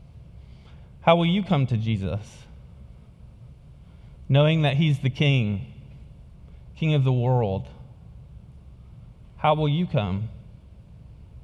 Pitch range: 110-155 Hz